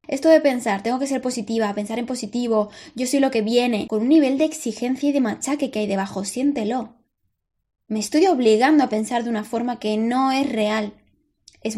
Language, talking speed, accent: Spanish, 205 wpm, Spanish